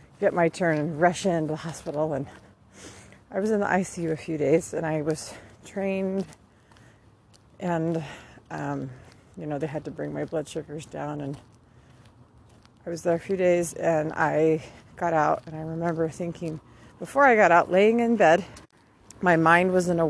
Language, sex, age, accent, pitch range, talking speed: English, female, 40-59, American, 140-175 Hz, 180 wpm